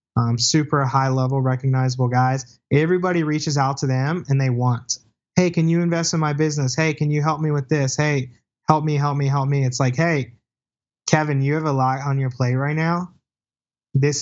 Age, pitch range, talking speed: 20-39, 125-150 Hz, 205 wpm